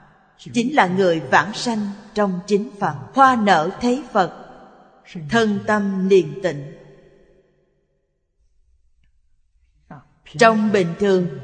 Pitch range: 150-220 Hz